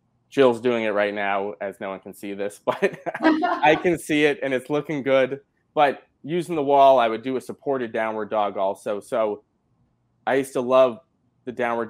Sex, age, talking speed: male, 20-39, 195 wpm